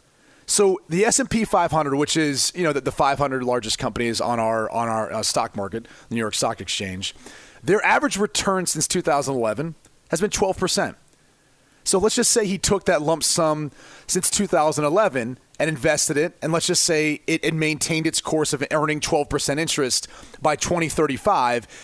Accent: American